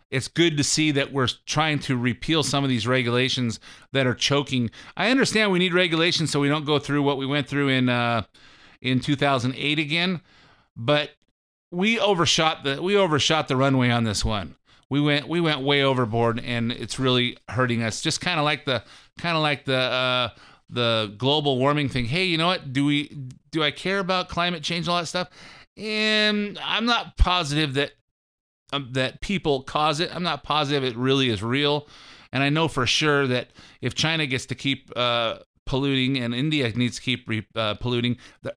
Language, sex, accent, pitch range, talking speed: English, male, American, 120-150 Hz, 195 wpm